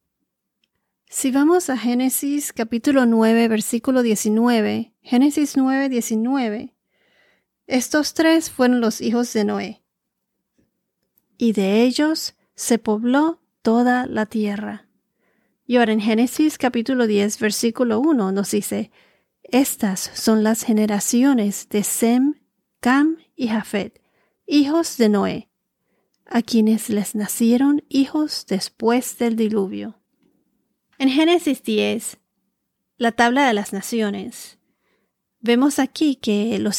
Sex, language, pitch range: female, Spanish, 215-270 Hz